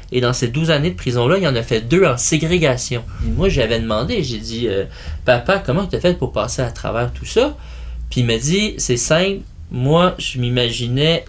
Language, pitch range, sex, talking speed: French, 115-150 Hz, male, 215 wpm